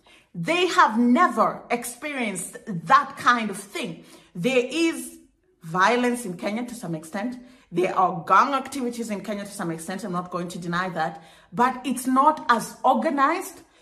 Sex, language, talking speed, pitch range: female, English, 155 wpm, 205-275 Hz